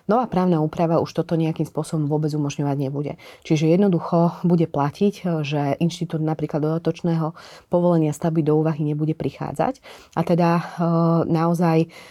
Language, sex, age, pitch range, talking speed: Slovak, female, 30-49, 150-165 Hz, 135 wpm